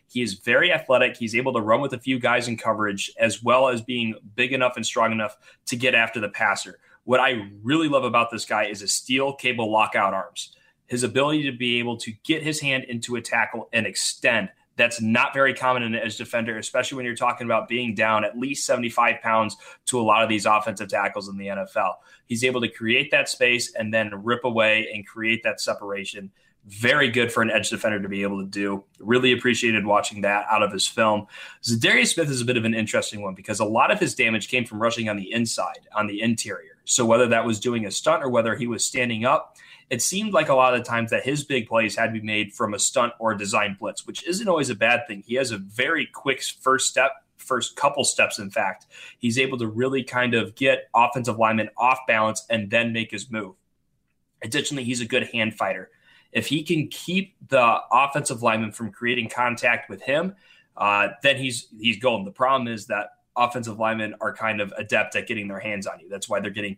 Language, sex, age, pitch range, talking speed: English, male, 20-39, 110-125 Hz, 230 wpm